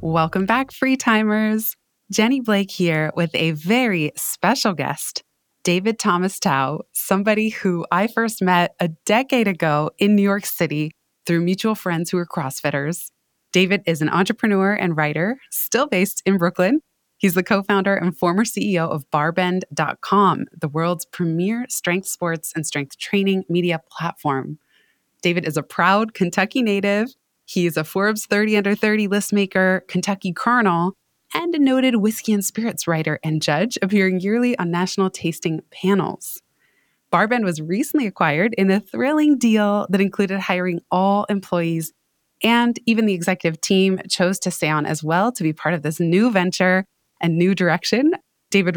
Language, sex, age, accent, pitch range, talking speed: English, female, 20-39, American, 170-215 Hz, 155 wpm